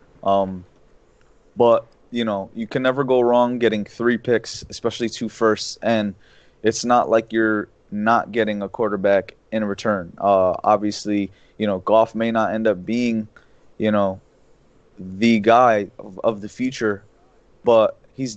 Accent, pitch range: American, 105-125 Hz